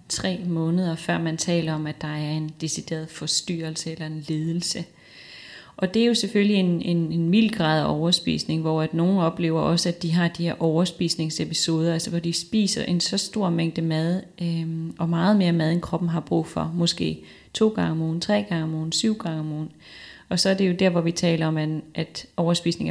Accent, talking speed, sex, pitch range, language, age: native, 210 wpm, female, 165-185 Hz, Danish, 30-49